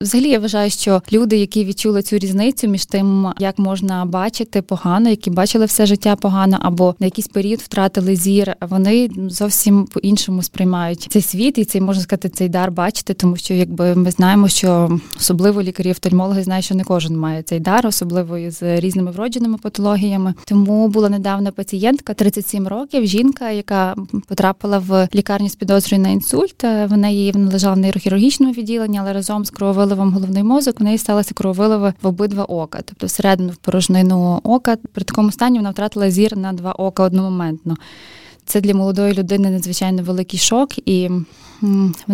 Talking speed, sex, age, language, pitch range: 165 wpm, female, 20-39, Ukrainian, 185-210 Hz